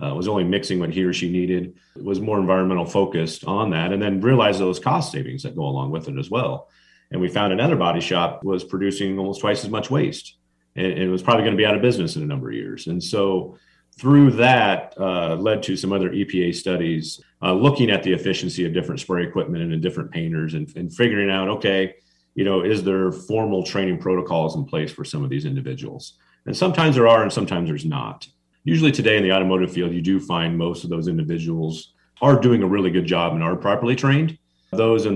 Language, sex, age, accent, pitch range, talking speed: English, male, 40-59, American, 90-105 Hz, 225 wpm